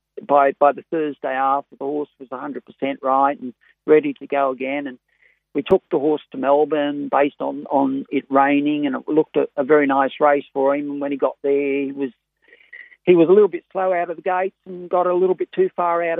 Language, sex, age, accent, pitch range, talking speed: English, male, 50-69, Australian, 135-165 Hz, 230 wpm